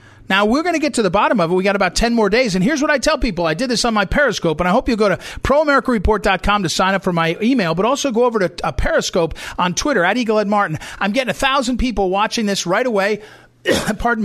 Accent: American